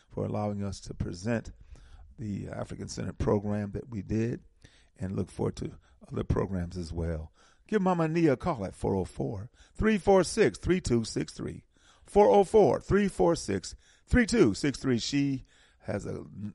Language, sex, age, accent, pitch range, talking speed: English, male, 40-59, American, 90-125 Hz, 110 wpm